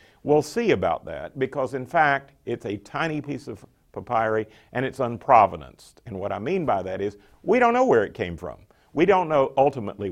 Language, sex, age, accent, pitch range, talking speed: English, male, 50-69, American, 100-150 Hz, 200 wpm